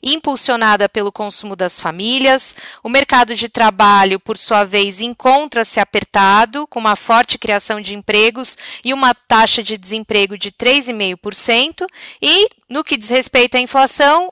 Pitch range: 215-270 Hz